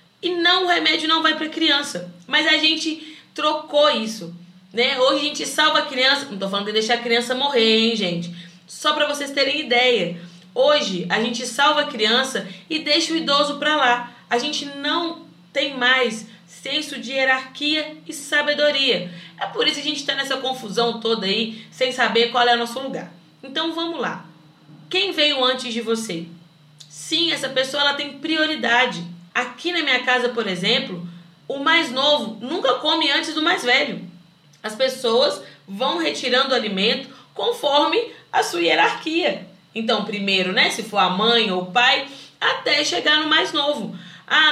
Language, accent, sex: Portuguese, Brazilian, female